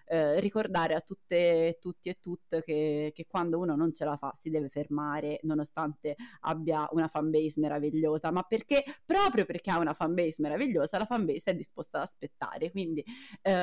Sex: female